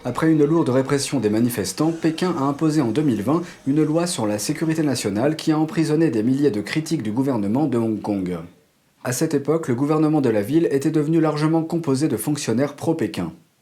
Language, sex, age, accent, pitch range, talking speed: French, male, 40-59, French, 120-160 Hz, 195 wpm